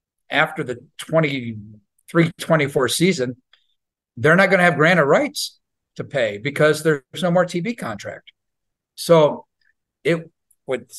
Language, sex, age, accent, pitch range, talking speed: English, male, 50-69, American, 120-150 Hz, 125 wpm